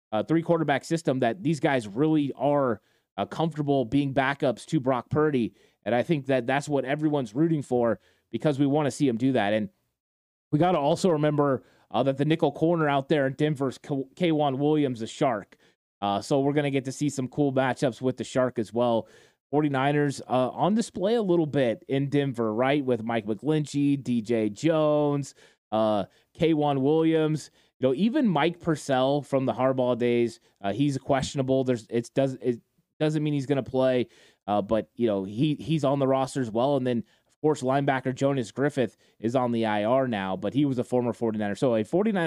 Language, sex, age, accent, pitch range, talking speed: English, male, 20-39, American, 120-150 Hz, 200 wpm